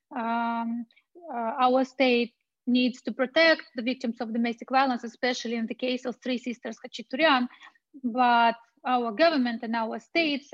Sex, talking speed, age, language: female, 150 wpm, 20-39, English